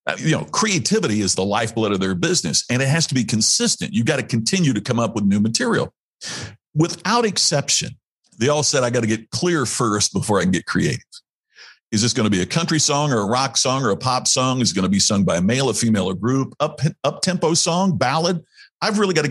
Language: English